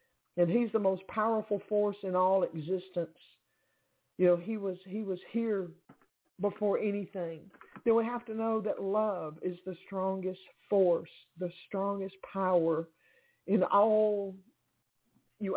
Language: English